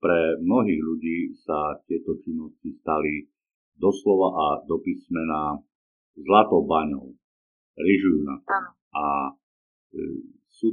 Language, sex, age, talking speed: Slovak, male, 50-69, 100 wpm